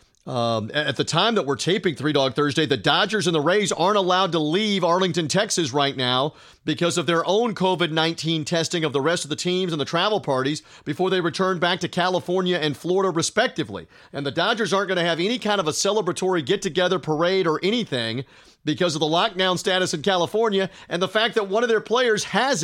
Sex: male